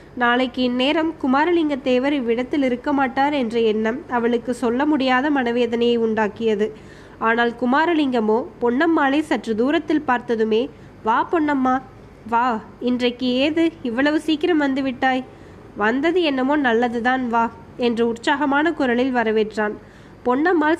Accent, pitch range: native, 235-290 Hz